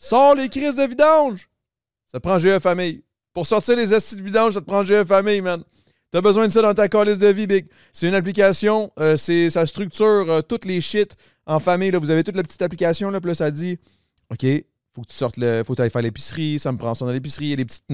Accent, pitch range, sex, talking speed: Canadian, 130-195 Hz, male, 260 wpm